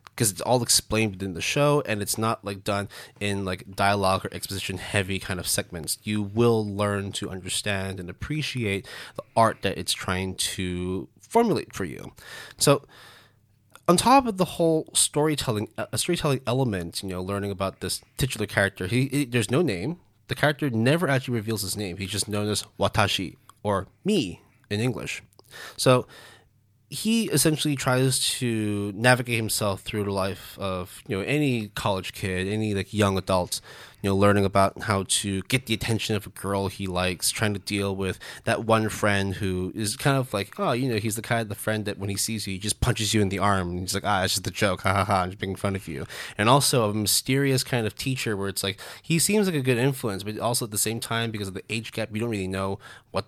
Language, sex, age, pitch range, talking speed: English, male, 20-39, 95-120 Hz, 215 wpm